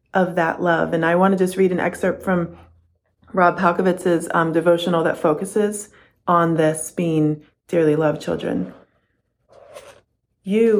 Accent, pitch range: American, 165-190 Hz